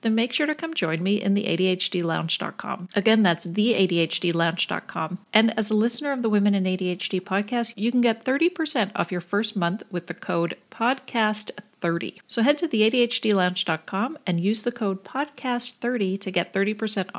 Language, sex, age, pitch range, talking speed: English, female, 40-59, 185-245 Hz, 160 wpm